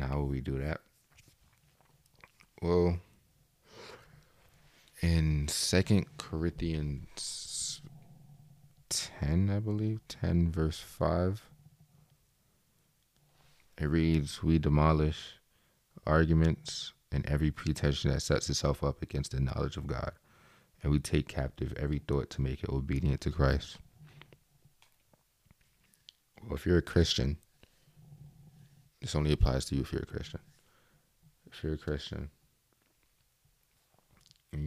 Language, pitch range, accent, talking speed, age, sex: English, 70-110 Hz, American, 110 wpm, 30-49, male